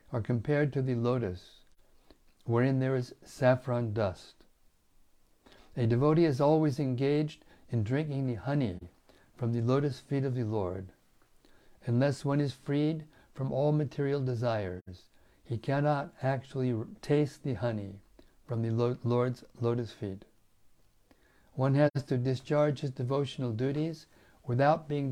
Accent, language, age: American, English, 60-79